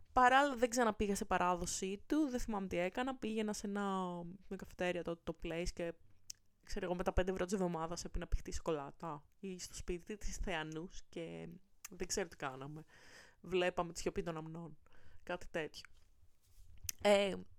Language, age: Greek, 20-39